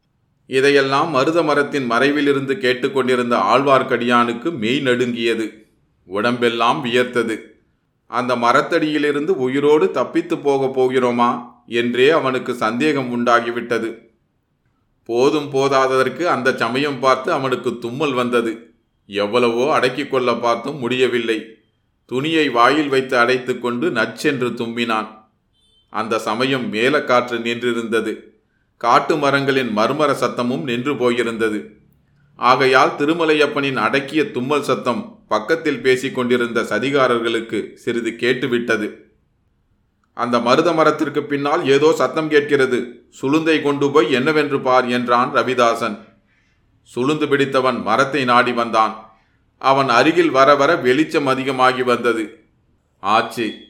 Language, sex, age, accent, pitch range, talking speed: Tamil, male, 30-49, native, 120-140 Hz, 95 wpm